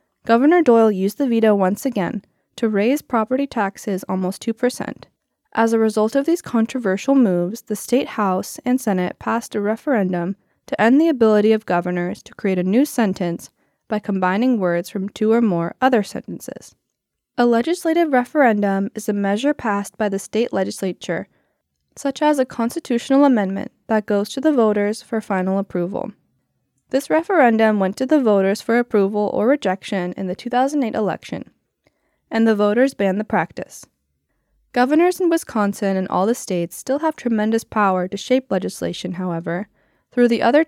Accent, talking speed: American, 160 wpm